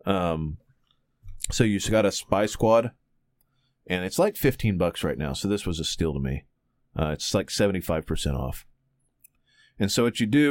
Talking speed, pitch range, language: 175 wpm, 95-115 Hz, English